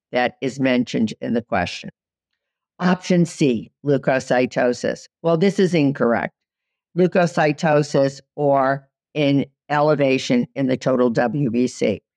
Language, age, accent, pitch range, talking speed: English, 50-69, American, 130-170 Hz, 105 wpm